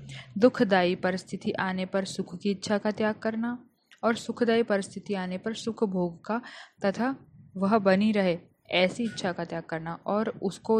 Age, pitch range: 20-39, 180-210 Hz